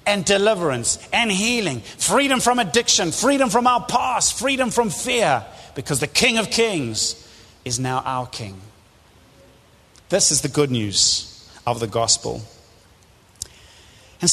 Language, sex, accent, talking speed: English, male, British, 135 wpm